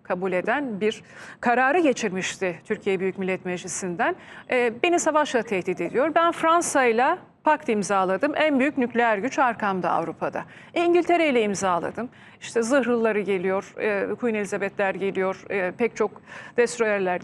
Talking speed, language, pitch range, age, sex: 120 wpm, Turkish, 205-290 Hz, 40-59, female